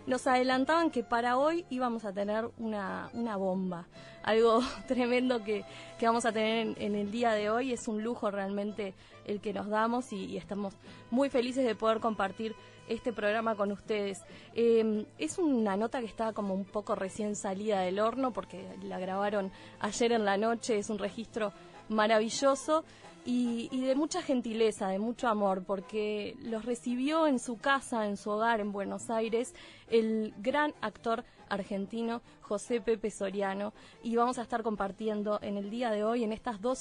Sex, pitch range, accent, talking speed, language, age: female, 205-245 Hz, Argentinian, 175 wpm, Spanish, 20-39